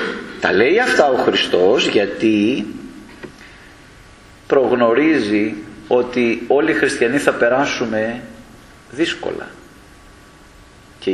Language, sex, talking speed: Greek, male, 80 wpm